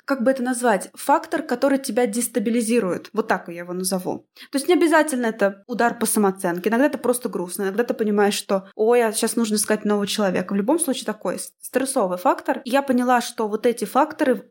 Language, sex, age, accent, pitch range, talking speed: Russian, female, 20-39, native, 205-255 Hz, 205 wpm